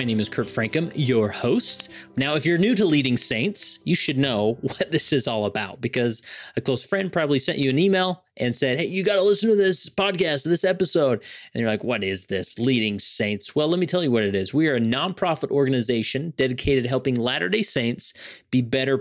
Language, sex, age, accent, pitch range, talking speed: English, male, 30-49, American, 110-150 Hz, 225 wpm